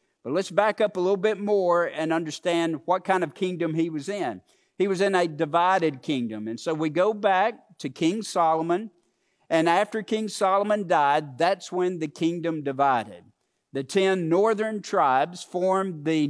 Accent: American